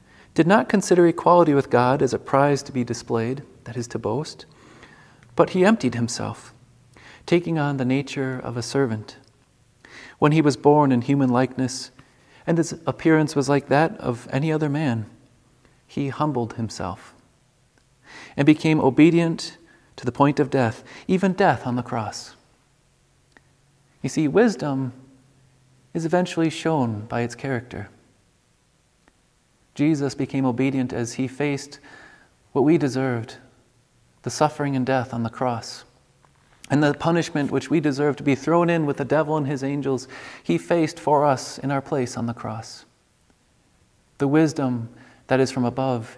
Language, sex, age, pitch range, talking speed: English, male, 40-59, 120-145 Hz, 150 wpm